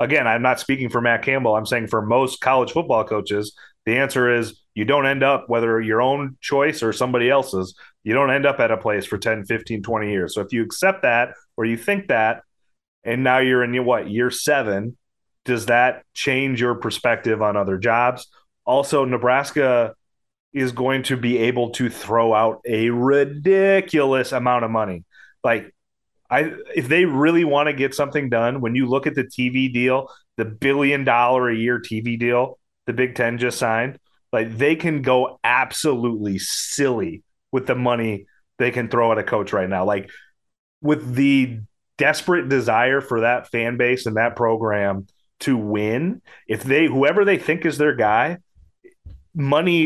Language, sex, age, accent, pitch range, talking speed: English, male, 30-49, American, 115-135 Hz, 180 wpm